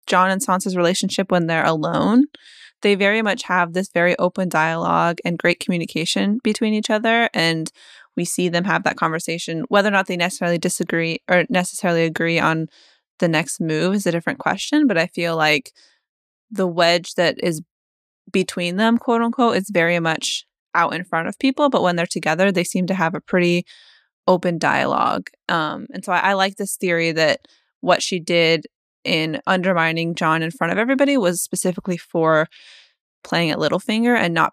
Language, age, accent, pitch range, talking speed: English, 20-39, American, 165-195 Hz, 180 wpm